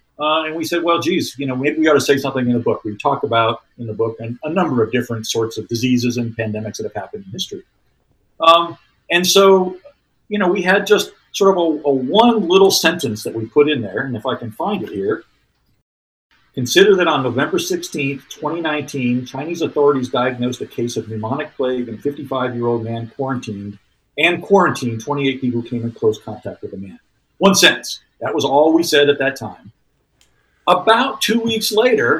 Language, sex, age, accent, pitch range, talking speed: English, male, 50-69, American, 120-170 Hz, 210 wpm